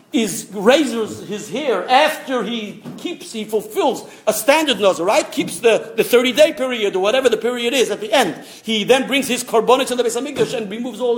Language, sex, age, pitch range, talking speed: English, male, 50-69, 220-320 Hz, 200 wpm